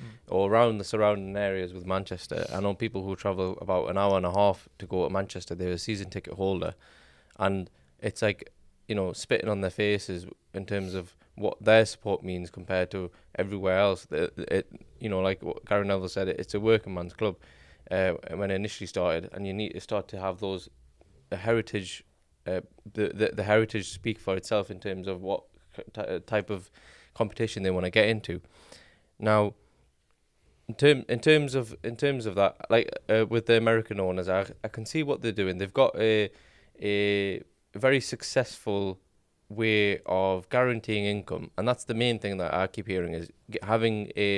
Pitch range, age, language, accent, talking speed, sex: 90-110 Hz, 20-39, English, British, 190 wpm, male